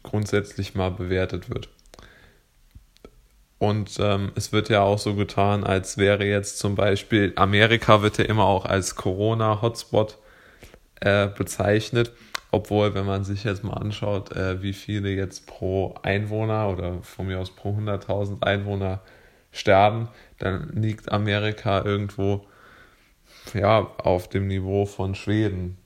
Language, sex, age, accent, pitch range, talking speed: German, male, 20-39, German, 95-105 Hz, 130 wpm